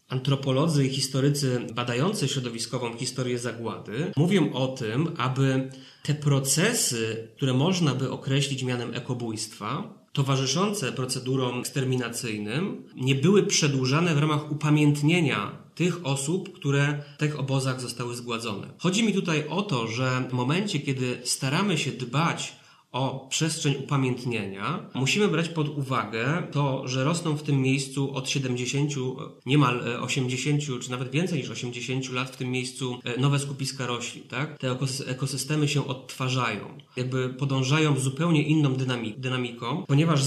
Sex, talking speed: male, 135 wpm